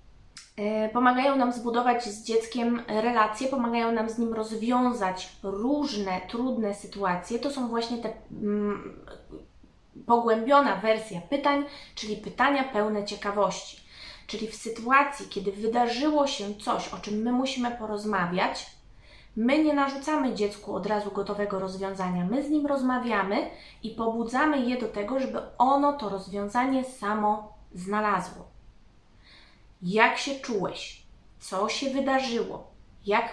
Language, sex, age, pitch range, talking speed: Polish, female, 20-39, 205-255 Hz, 120 wpm